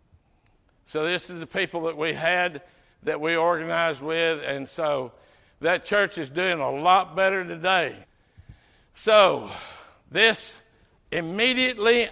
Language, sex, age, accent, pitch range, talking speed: English, male, 60-79, American, 165-205 Hz, 125 wpm